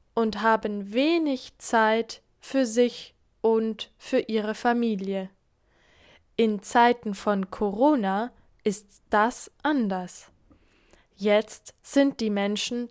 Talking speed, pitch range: 100 wpm, 205-265 Hz